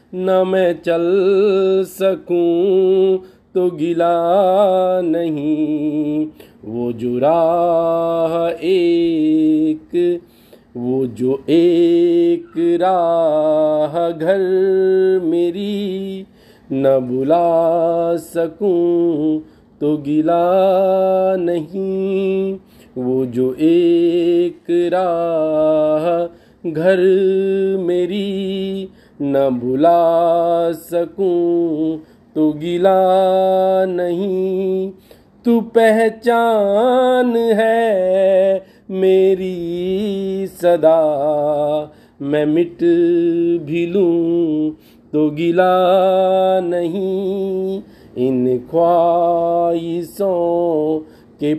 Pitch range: 165-195 Hz